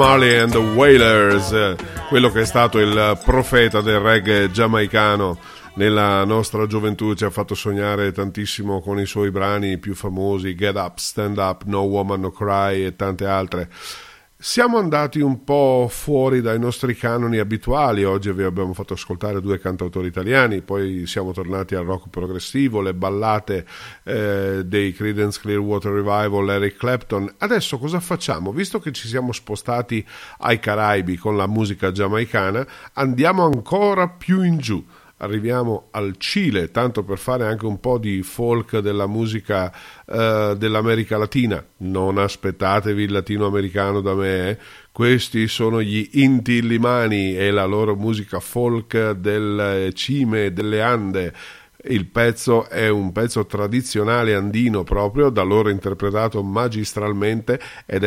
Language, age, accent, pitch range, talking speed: Italian, 40-59, native, 100-115 Hz, 145 wpm